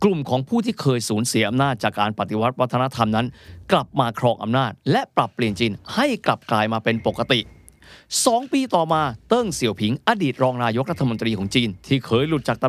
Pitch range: 110-145 Hz